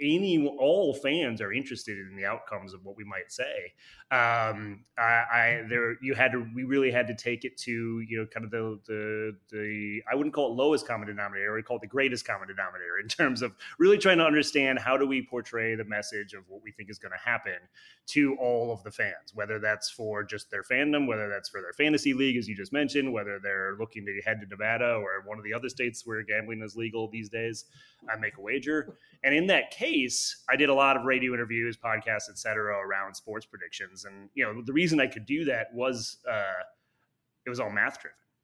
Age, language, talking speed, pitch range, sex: 30-49, English, 230 wpm, 105-130 Hz, male